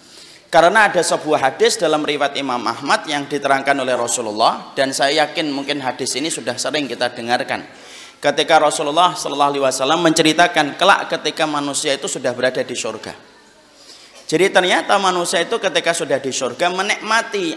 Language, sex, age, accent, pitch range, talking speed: Indonesian, male, 30-49, native, 135-175 Hz, 145 wpm